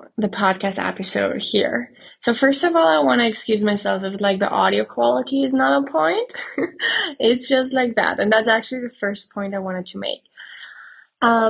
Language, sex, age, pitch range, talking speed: English, female, 10-29, 200-235 Hz, 195 wpm